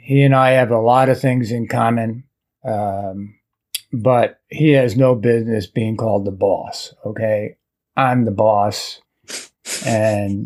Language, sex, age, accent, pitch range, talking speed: English, male, 50-69, American, 120-185 Hz, 145 wpm